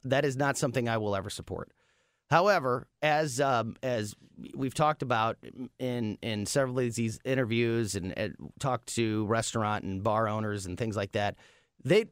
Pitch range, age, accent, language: 115-145 Hz, 30-49, American, English